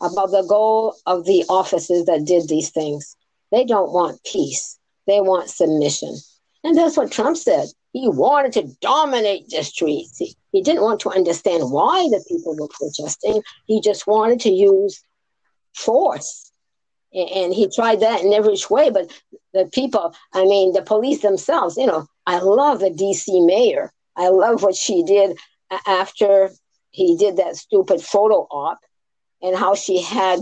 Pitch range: 185-240 Hz